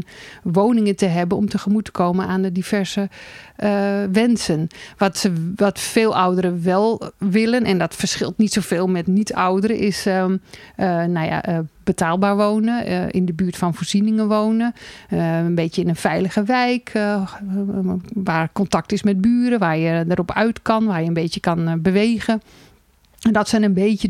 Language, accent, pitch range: Dutch, Dutch, 185-210 Hz